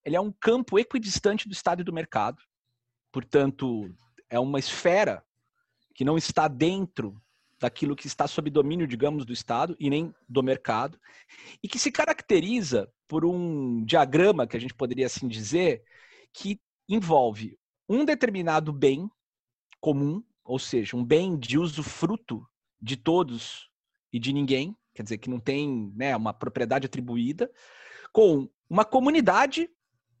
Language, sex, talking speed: Portuguese, male, 145 wpm